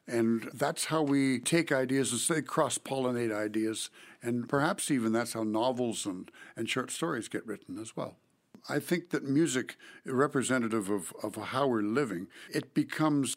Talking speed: 160 wpm